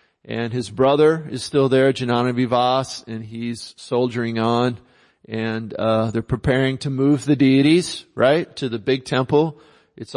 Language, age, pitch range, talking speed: English, 40-59, 115-140 Hz, 150 wpm